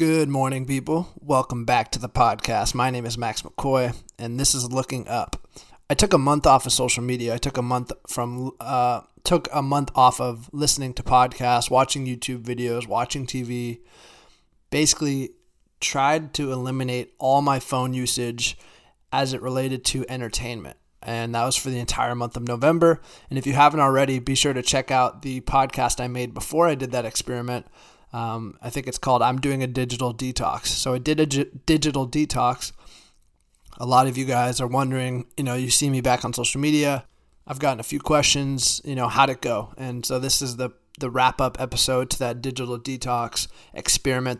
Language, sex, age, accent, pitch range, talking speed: English, male, 20-39, American, 120-135 Hz, 190 wpm